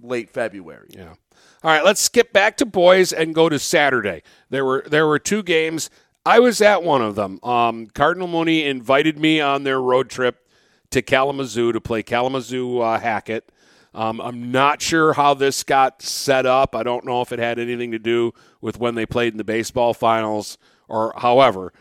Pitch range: 115-135 Hz